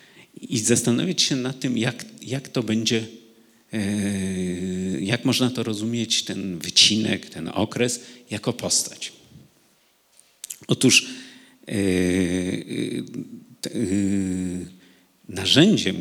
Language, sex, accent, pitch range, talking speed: Polish, male, native, 95-120 Hz, 80 wpm